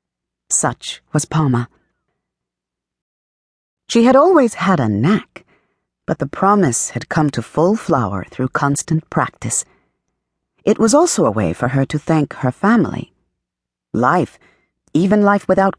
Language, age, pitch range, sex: English, 40-59, 125-190 Hz, female